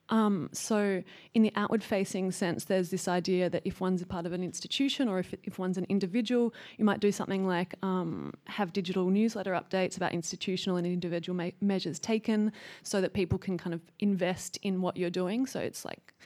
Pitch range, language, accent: 180-210 Hz, English, Australian